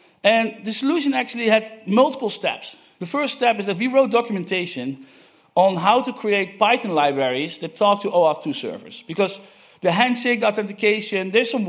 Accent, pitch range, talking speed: Dutch, 175-225 Hz, 165 wpm